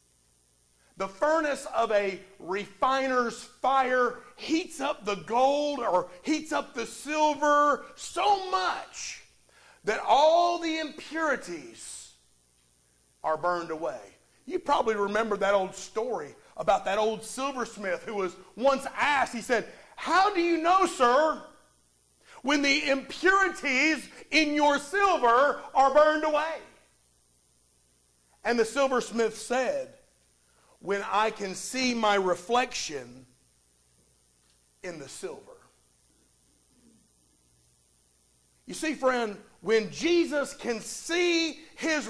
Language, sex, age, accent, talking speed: English, male, 40-59, American, 105 wpm